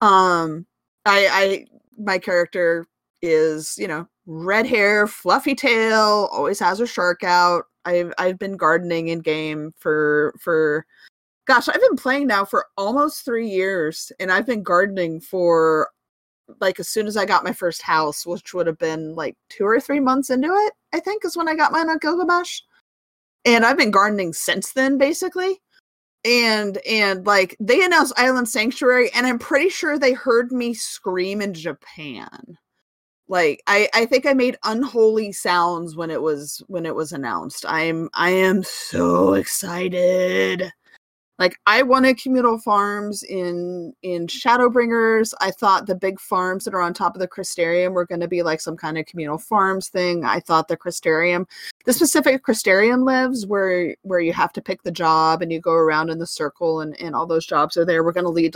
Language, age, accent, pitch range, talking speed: English, 30-49, American, 170-245 Hz, 180 wpm